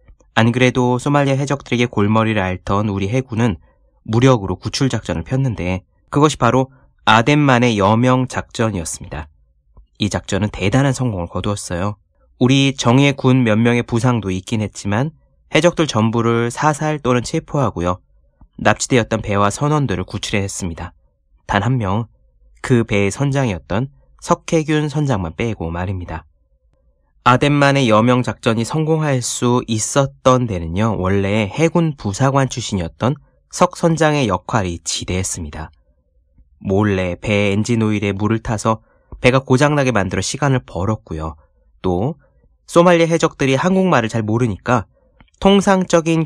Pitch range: 95-135 Hz